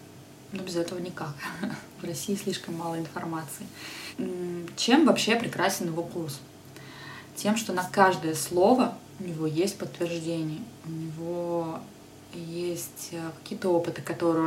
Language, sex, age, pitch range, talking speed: Russian, female, 20-39, 160-180 Hz, 120 wpm